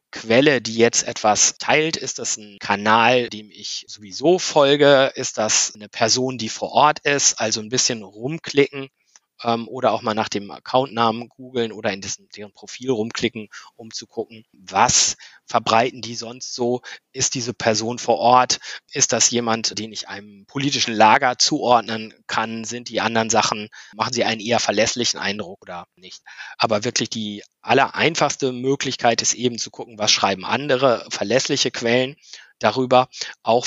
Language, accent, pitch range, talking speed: German, German, 105-125 Hz, 155 wpm